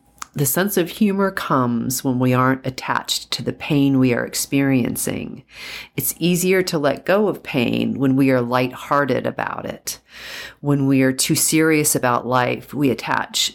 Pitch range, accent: 120-140 Hz, American